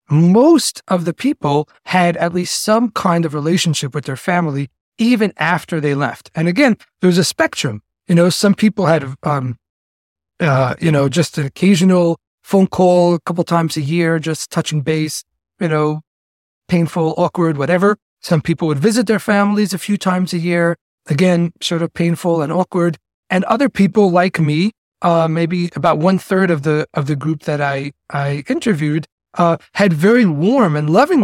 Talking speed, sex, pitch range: 175 wpm, male, 155-195 Hz